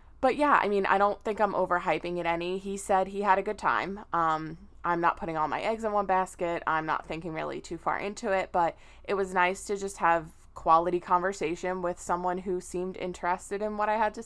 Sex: female